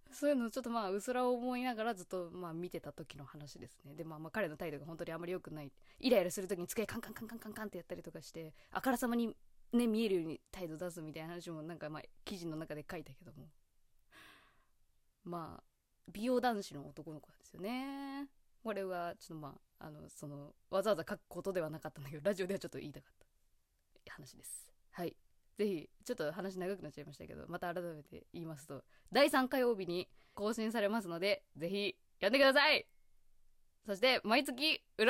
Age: 20-39